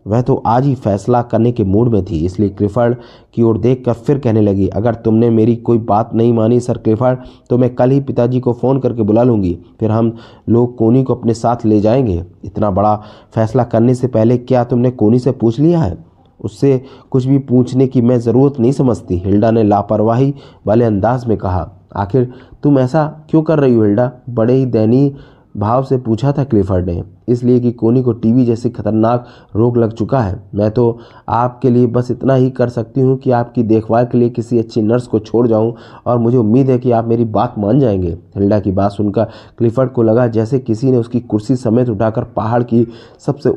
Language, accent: Hindi, native